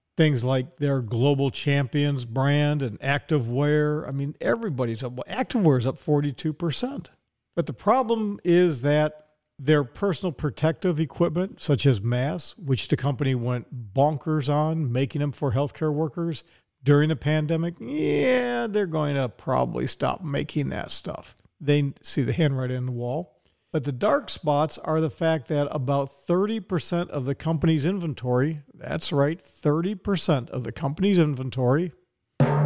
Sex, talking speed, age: male, 145 wpm, 50-69